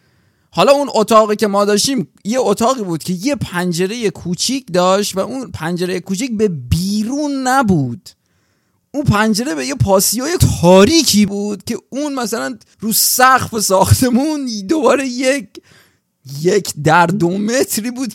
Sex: male